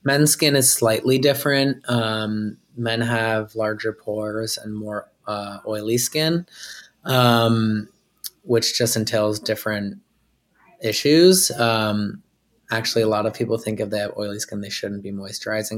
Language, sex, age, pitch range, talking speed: English, male, 20-39, 105-120 Hz, 140 wpm